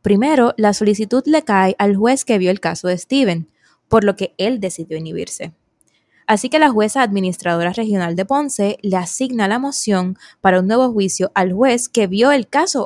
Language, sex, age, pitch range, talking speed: Spanish, female, 10-29, 185-235 Hz, 190 wpm